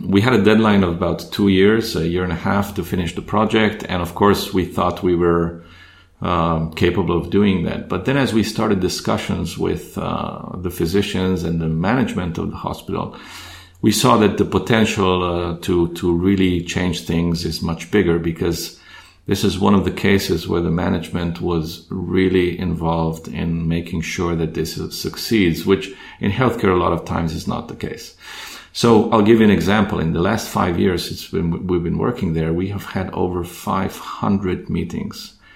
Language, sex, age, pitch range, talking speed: English, male, 40-59, 85-100 Hz, 185 wpm